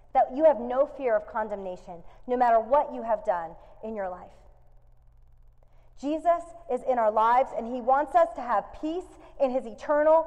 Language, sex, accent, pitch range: English, female, American, 225-315 Hz